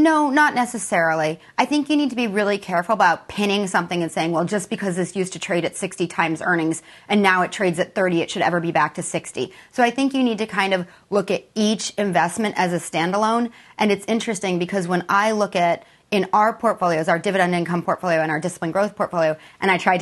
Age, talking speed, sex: 30-49, 235 wpm, female